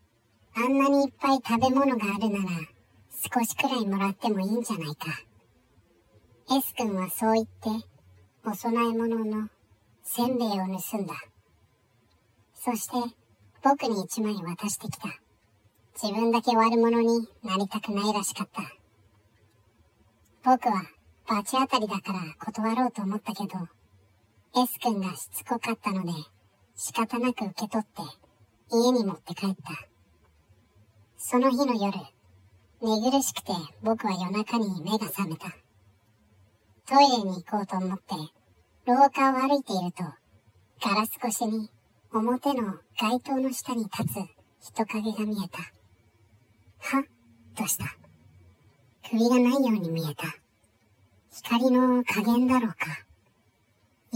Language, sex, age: Japanese, male, 50-69